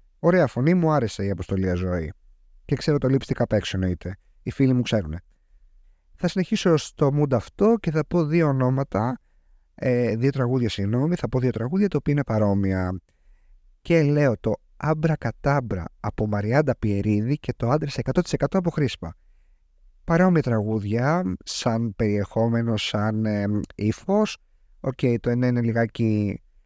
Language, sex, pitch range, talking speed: Greek, male, 100-140 Hz, 145 wpm